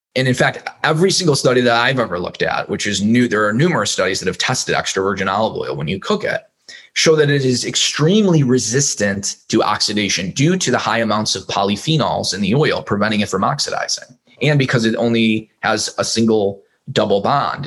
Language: English